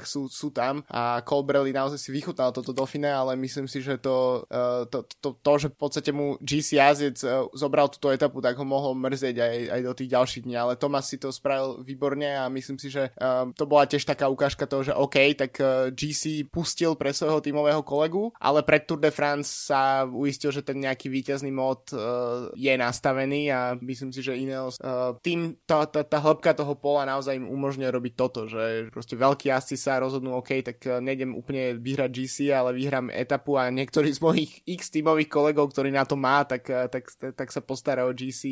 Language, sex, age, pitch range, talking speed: Slovak, male, 20-39, 130-145 Hz, 195 wpm